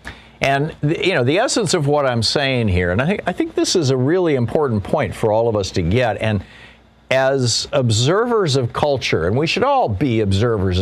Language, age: English, 50-69